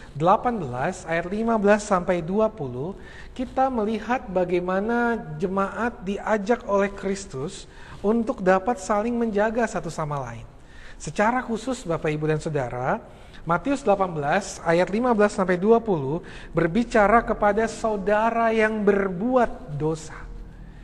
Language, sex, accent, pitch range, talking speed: Indonesian, male, native, 165-220 Hz, 105 wpm